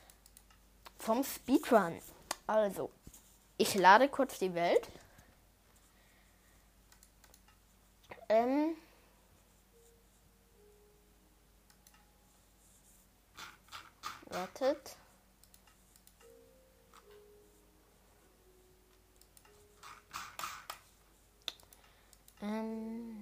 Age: 20-39